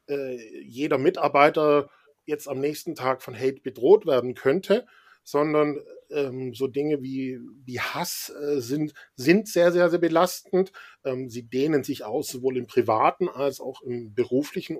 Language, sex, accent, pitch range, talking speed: German, male, German, 130-165 Hz, 150 wpm